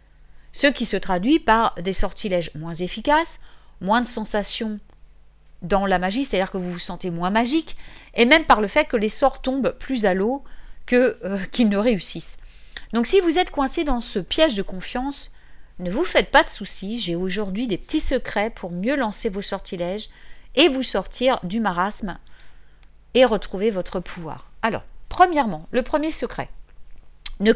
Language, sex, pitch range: French, female, 180-255 Hz